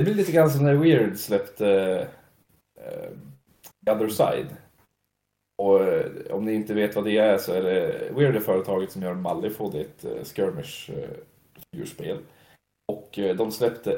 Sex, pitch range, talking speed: male, 100-150 Hz, 145 wpm